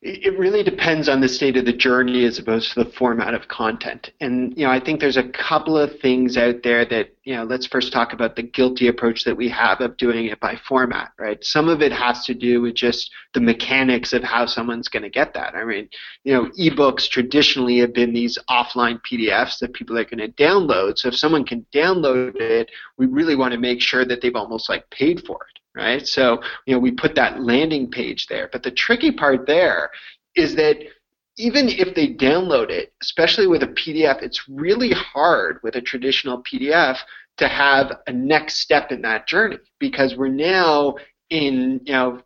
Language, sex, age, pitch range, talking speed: English, male, 30-49, 120-155 Hz, 210 wpm